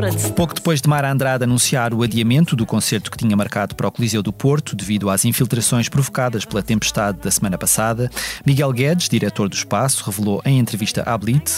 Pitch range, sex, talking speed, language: 110-135 Hz, male, 190 wpm, Portuguese